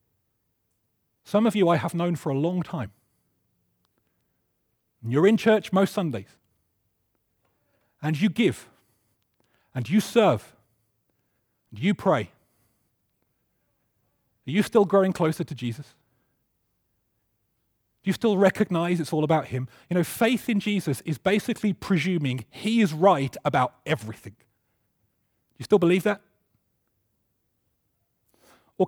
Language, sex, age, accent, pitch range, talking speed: English, male, 40-59, British, 115-185 Hz, 120 wpm